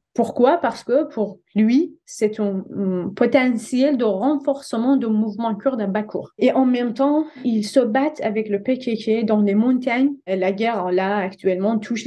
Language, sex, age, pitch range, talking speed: French, female, 20-39, 200-245 Hz, 175 wpm